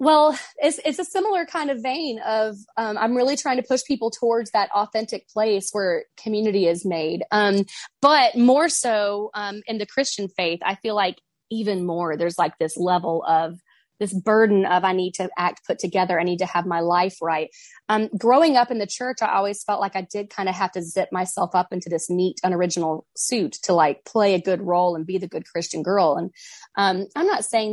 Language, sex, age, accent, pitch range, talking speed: English, female, 20-39, American, 180-245 Hz, 215 wpm